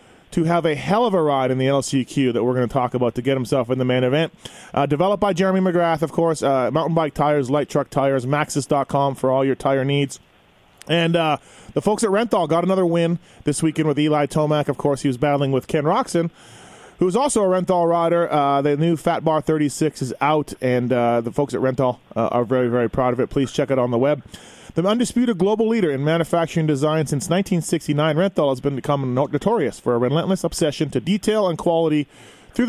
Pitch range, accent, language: 135-175 Hz, American, English